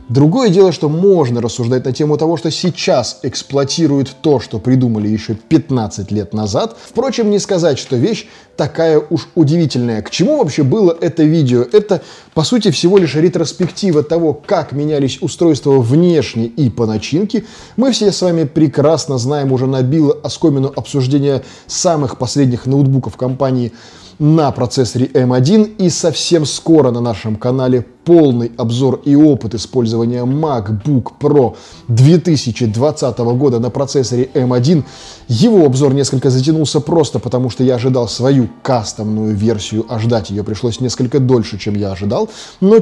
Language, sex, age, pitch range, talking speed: Russian, male, 20-39, 120-160 Hz, 145 wpm